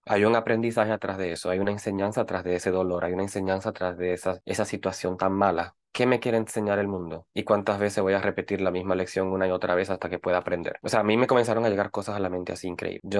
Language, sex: Spanish, male